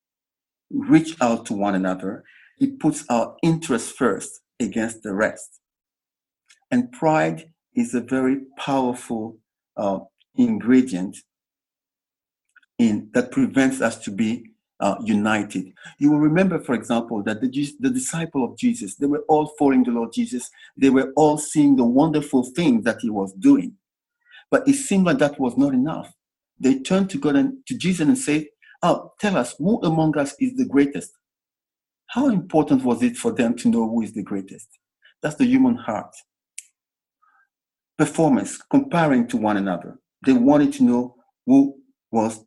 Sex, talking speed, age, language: male, 155 wpm, 50-69, English